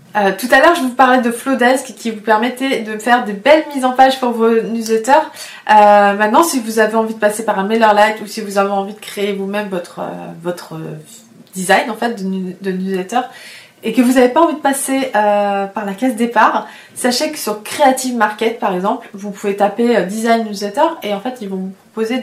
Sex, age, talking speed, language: female, 20-39, 220 wpm, French